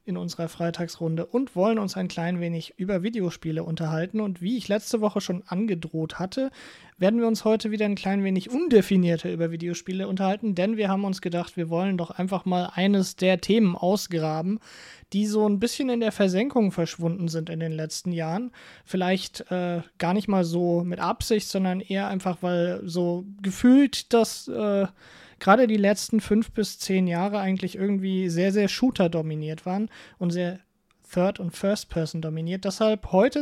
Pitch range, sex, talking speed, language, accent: 175-210 Hz, male, 175 wpm, English, German